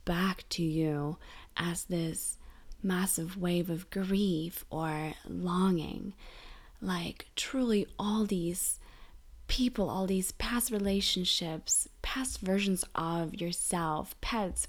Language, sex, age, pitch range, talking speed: English, female, 20-39, 175-200 Hz, 100 wpm